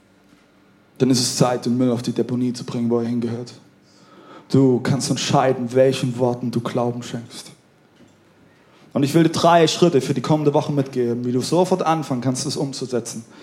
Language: German